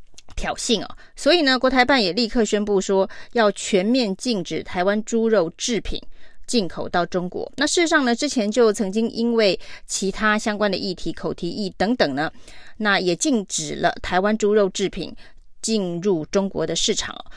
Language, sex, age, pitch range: Chinese, female, 30-49, 185-235 Hz